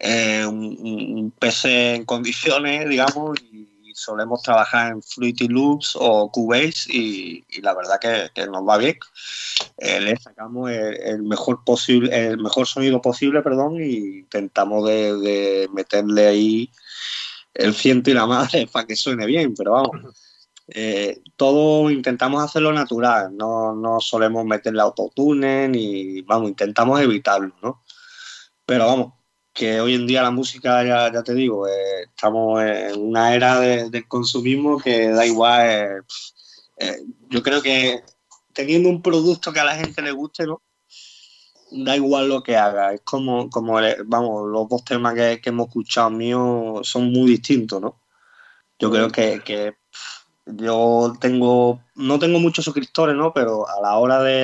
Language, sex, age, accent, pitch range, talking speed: Spanish, male, 20-39, Spanish, 110-135 Hz, 160 wpm